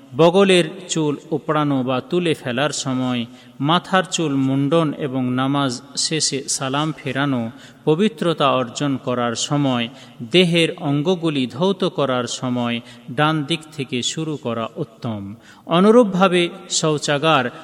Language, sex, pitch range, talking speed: Bengali, male, 125-170 Hz, 110 wpm